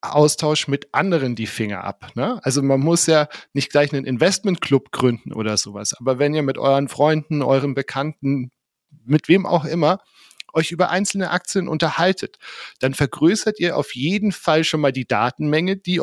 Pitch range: 130-160 Hz